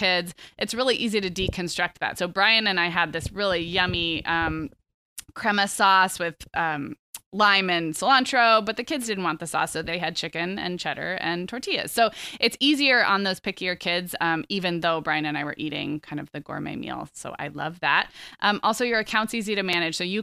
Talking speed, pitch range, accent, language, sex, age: 210 wpm, 165-220 Hz, American, English, female, 20-39